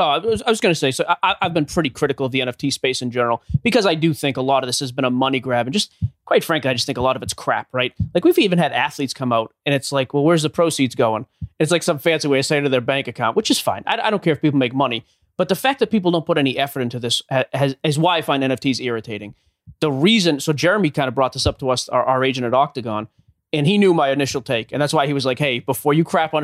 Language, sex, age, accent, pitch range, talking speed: English, male, 30-49, American, 130-170 Hz, 305 wpm